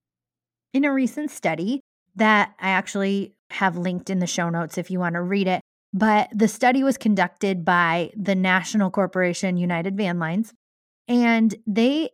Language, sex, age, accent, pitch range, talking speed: English, female, 20-39, American, 180-225 Hz, 165 wpm